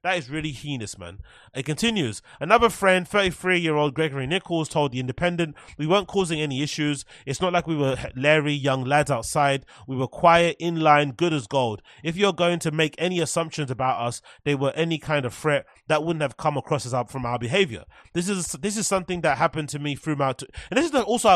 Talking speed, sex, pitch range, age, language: 215 wpm, male, 140-175 Hz, 30-49, English